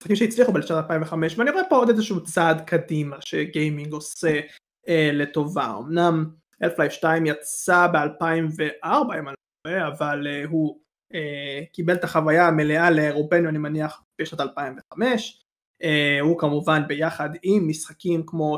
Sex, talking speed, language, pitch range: male, 135 wpm, Hebrew, 150-175 Hz